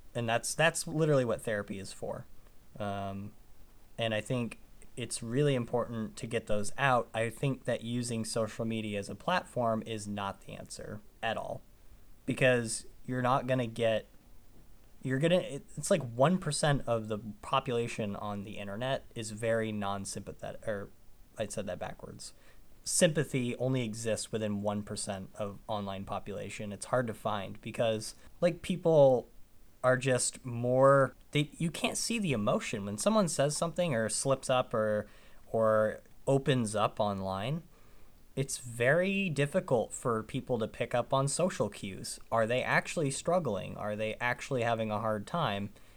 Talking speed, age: 155 wpm, 20-39